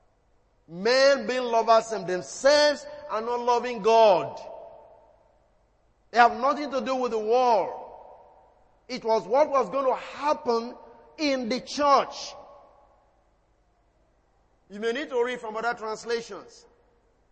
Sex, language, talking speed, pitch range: male, English, 120 wpm, 190-255 Hz